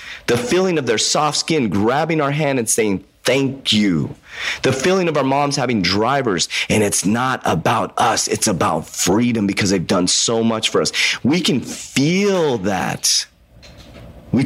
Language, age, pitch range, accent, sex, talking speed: English, 30-49, 95-130 Hz, American, male, 165 wpm